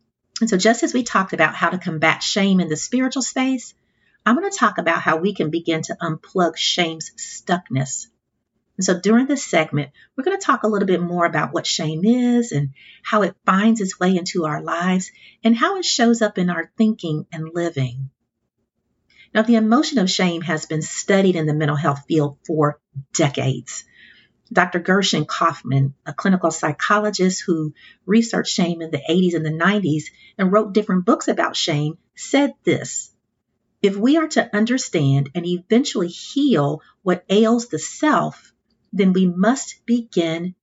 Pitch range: 155-215 Hz